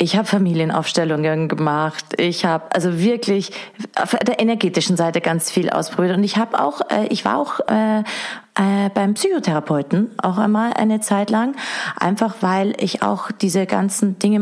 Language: German